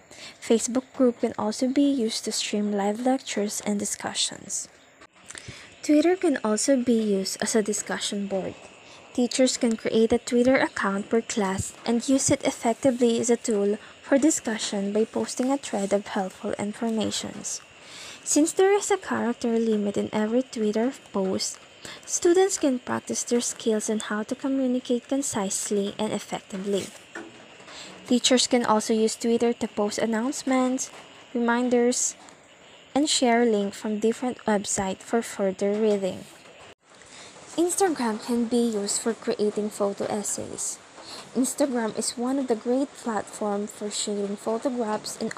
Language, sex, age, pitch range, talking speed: English, female, 20-39, 210-255 Hz, 140 wpm